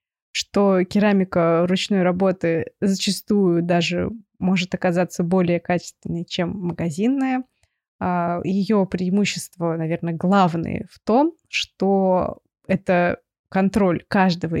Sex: female